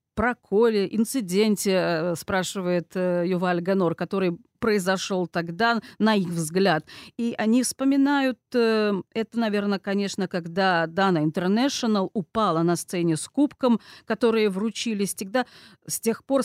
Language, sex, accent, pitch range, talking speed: Russian, female, native, 180-225 Hz, 115 wpm